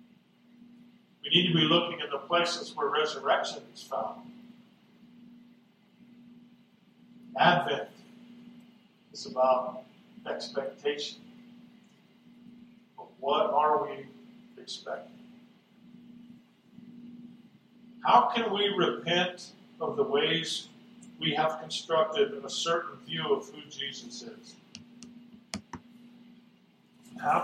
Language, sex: English, male